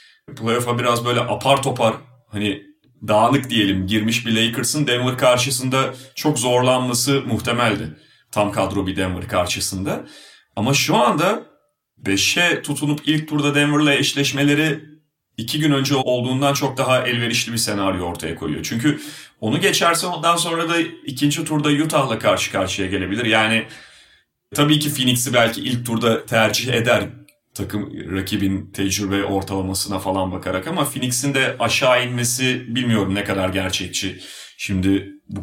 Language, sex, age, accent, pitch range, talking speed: Turkish, male, 30-49, native, 100-140 Hz, 135 wpm